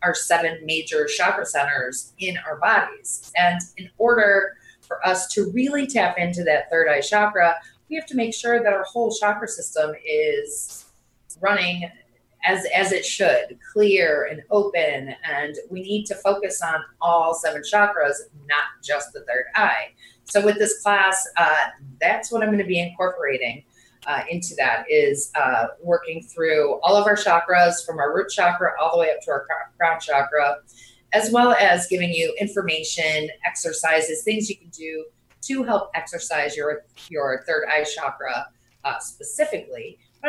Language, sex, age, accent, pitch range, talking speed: English, female, 30-49, American, 155-210 Hz, 165 wpm